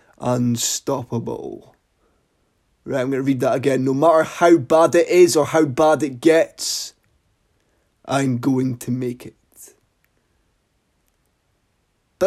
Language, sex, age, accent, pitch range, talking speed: English, male, 20-39, British, 130-195 Hz, 120 wpm